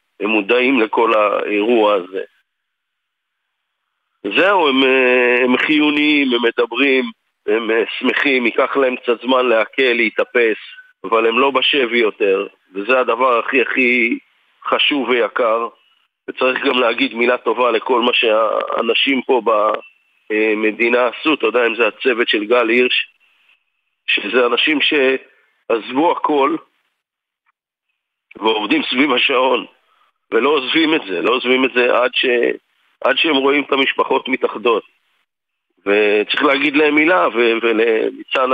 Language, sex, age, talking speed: Hebrew, male, 50-69, 120 wpm